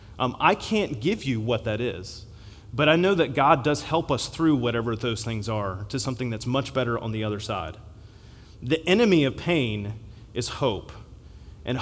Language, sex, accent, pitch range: English, male, American, 110-160 Hz